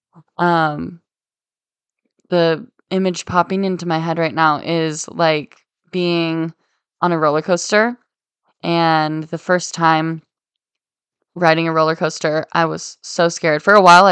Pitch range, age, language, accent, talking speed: 165-190 Hz, 10-29, English, American, 130 wpm